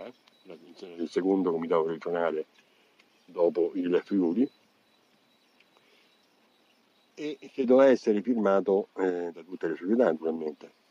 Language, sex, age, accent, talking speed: Italian, male, 50-69, native, 100 wpm